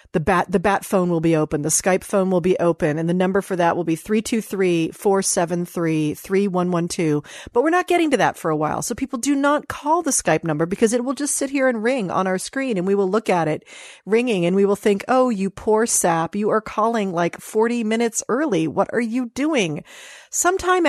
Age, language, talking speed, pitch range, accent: 40-59, English, 220 wpm, 175-225 Hz, American